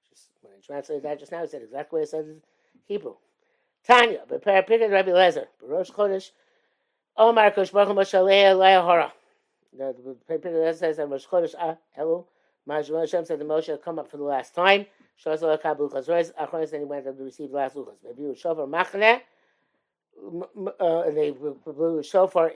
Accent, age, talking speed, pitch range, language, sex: American, 60-79, 85 wpm, 150-195 Hz, English, male